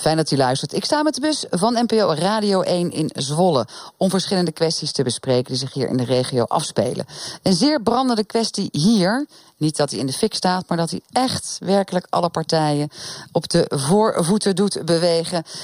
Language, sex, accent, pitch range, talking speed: Dutch, female, Dutch, 155-215 Hz, 195 wpm